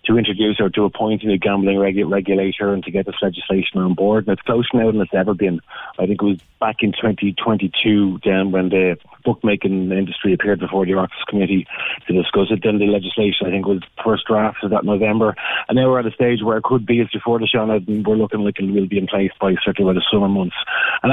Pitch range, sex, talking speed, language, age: 95-110 Hz, male, 245 wpm, English, 30-49